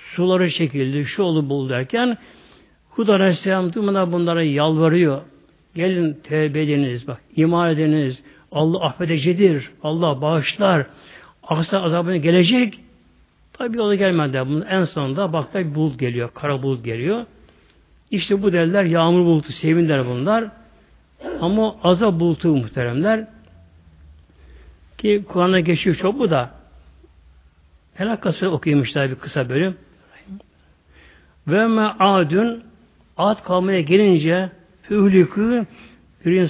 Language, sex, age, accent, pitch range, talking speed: Turkish, male, 60-79, native, 135-195 Hz, 105 wpm